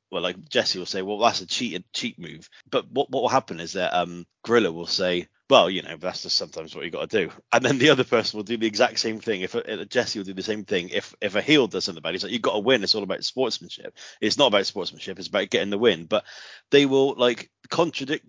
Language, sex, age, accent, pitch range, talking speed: English, male, 30-49, British, 90-115 Hz, 270 wpm